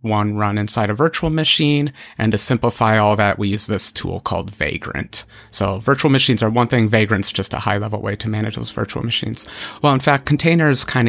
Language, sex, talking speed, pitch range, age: English, male, 210 wpm, 105-135 Hz, 30-49